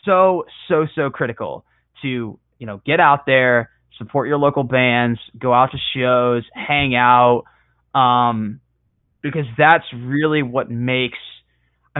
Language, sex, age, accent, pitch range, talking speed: English, male, 20-39, American, 115-140 Hz, 135 wpm